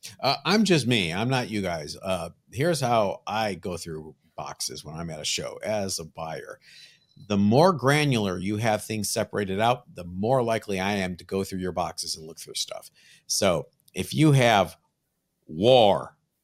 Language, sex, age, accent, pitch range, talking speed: English, male, 50-69, American, 105-155 Hz, 185 wpm